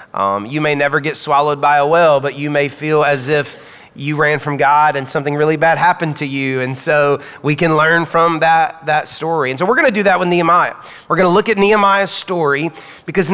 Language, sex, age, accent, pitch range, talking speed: English, male, 30-49, American, 150-190 Hz, 235 wpm